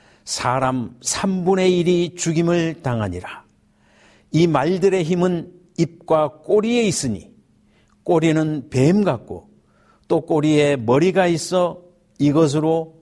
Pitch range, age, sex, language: 145-195 Hz, 60-79, male, Korean